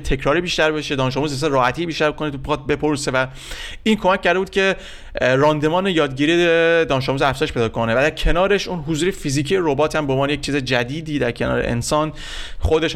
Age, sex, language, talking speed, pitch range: 30-49, male, Persian, 180 wpm, 130-165 Hz